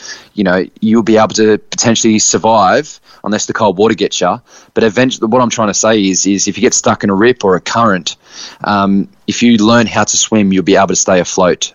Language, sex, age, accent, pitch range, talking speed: English, male, 20-39, Australian, 100-115 Hz, 235 wpm